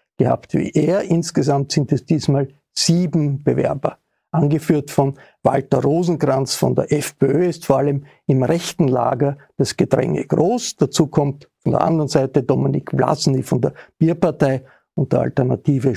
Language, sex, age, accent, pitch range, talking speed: German, male, 50-69, Austrian, 140-170 Hz, 145 wpm